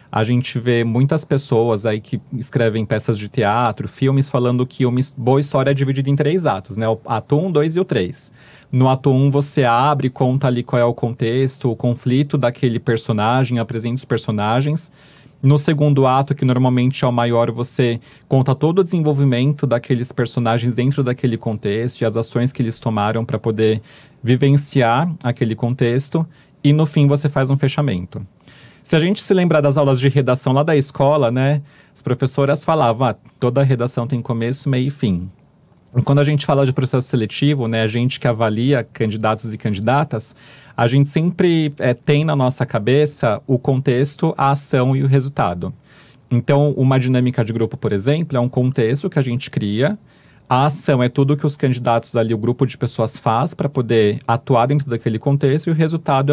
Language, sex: Portuguese, male